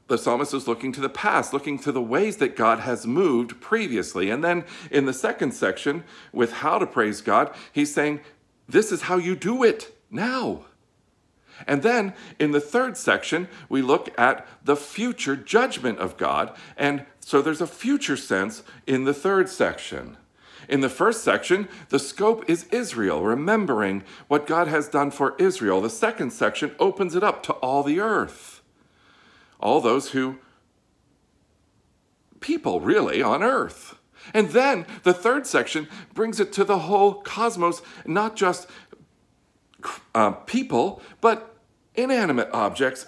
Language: English